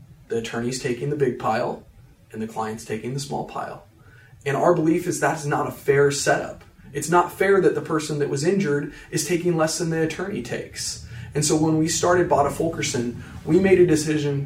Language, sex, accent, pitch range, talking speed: English, male, American, 130-160 Hz, 205 wpm